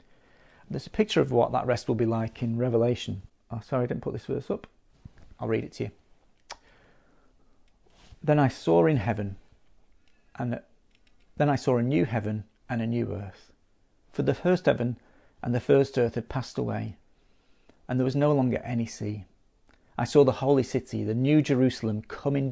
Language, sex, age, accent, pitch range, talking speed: English, male, 40-59, British, 105-130 Hz, 180 wpm